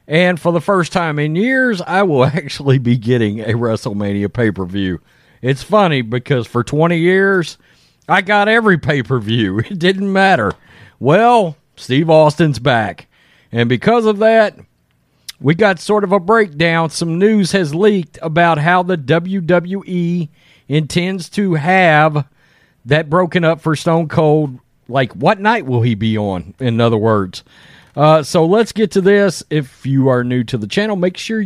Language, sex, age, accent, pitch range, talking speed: English, male, 40-59, American, 140-200 Hz, 160 wpm